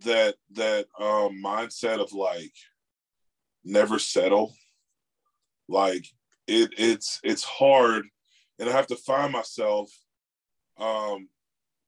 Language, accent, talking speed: English, American, 100 wpm